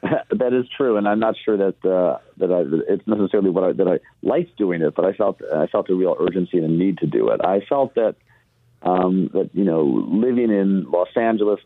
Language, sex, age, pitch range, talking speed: English, male, 50-69, 90-105 Hz, 220 wpm